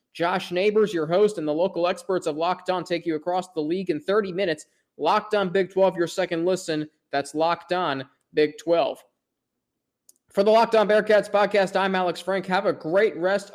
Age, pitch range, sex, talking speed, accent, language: 20-39, 170-215 Hz, male, 195 wpm, American, English